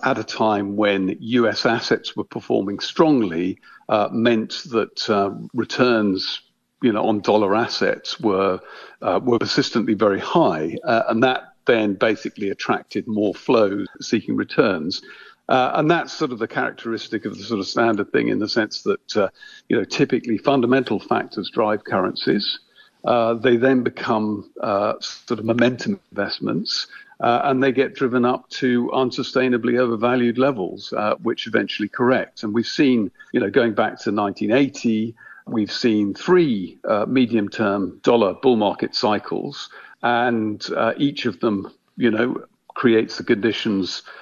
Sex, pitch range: male, 105-130 Hz